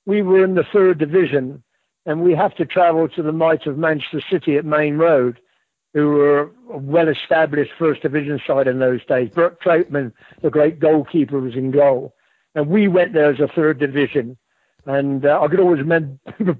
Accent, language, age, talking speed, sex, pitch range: British, English, 60-79, 190 wpm, male, 145-170 Hz